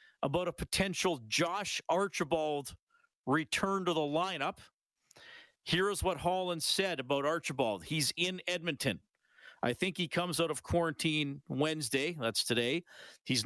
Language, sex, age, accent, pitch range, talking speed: English, male, 50-69, American, 130-165 Hz, 135 wpm